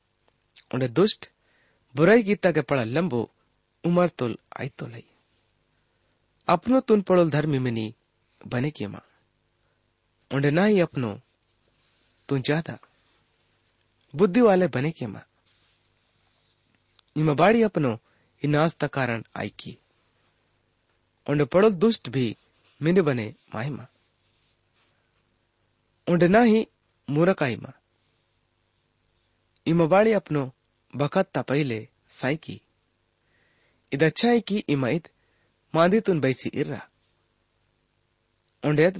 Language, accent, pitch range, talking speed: English, Indian, 110-165 Hz, 90 wpm